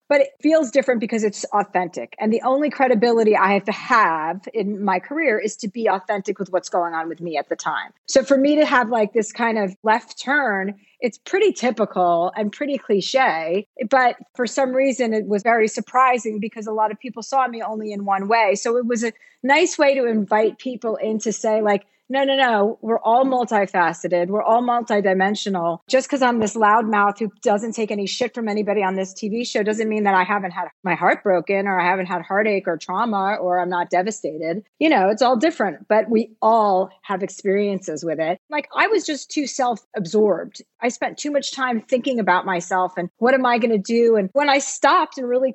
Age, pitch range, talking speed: 40-59, 195-255 Hz, 215 wpm